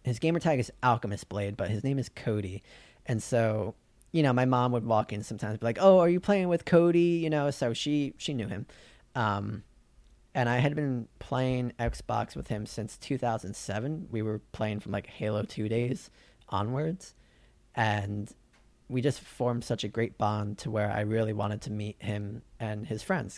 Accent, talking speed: American, 195 wpm